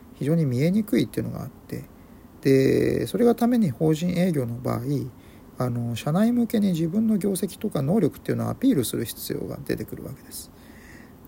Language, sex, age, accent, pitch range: Japanese, male, 50-69, native, 125-180 Hz